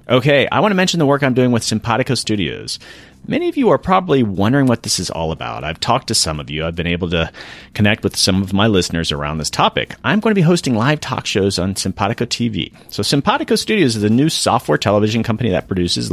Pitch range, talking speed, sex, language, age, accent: 95-130 Hz, 240 wpm, male, English, 40-59, American